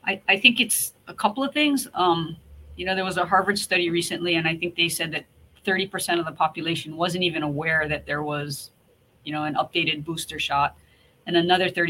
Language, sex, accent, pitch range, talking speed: English, female, American, 155-180 Hz, 205 wpm